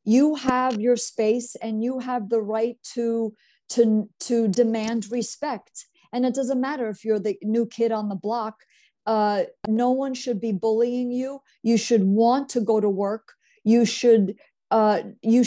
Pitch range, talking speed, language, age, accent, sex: 215-245 Hz, 170 wpm, English, 50-69, American, female